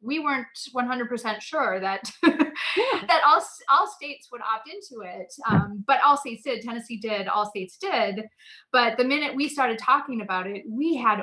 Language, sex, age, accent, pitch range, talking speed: English, female, 30-49, American, 200-255 Hz, 175 wpm